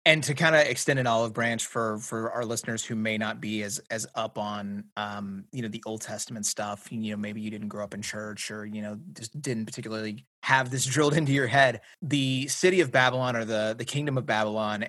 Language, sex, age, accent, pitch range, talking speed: English, male, 30-49, American, 110-130 Hz, 235 wpm